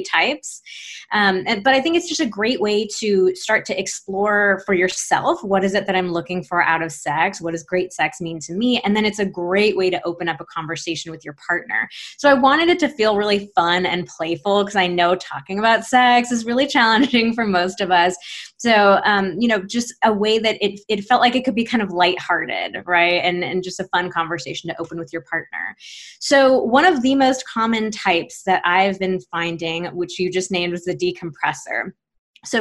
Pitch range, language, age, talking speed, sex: 180-220 Hz, English, 20-39, 220 wpm, female